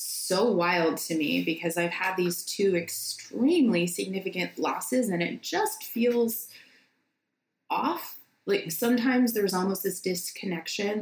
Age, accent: 20-39, American